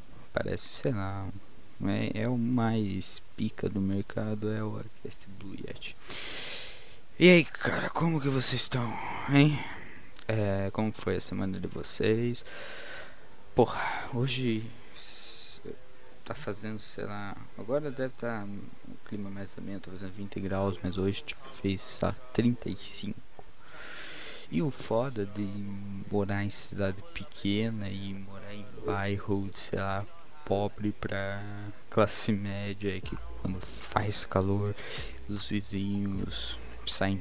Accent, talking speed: Brazilian, 125 wpm